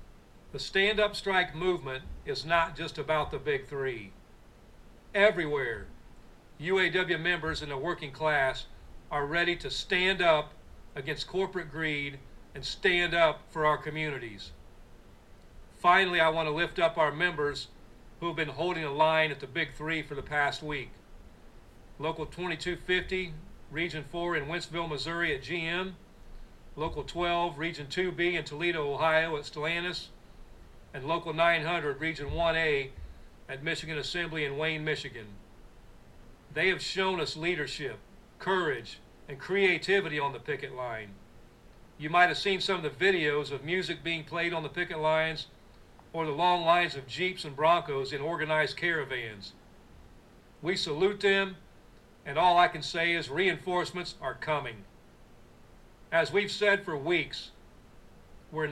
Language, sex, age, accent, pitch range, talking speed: English, male, 40-59, American, 145-175 Hz, 145 wpm